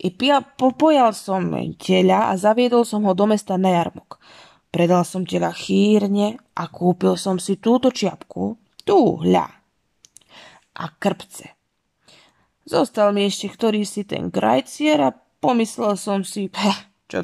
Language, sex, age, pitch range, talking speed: Slovak, female, 20-39, 180-210 Hz, 130 wpm